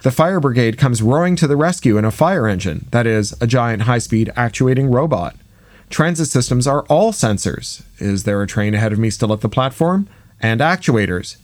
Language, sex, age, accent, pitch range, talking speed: English, male, 40-59, American, 105-145 Hz, 195 wpm